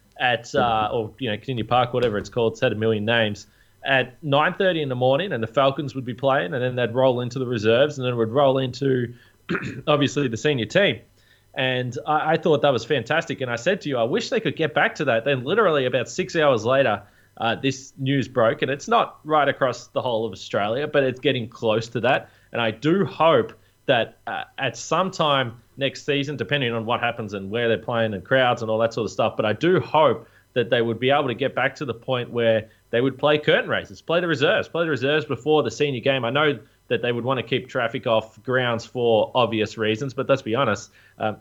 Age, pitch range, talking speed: 20-39, 115-140 Hz, 240 wpm